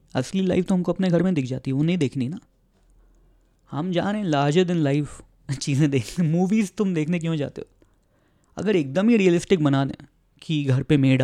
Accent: native